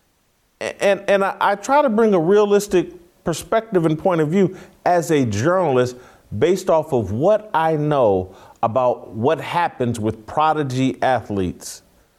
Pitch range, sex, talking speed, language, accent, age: 120-180 Hz, male, 145 wpm, English, American, 40-59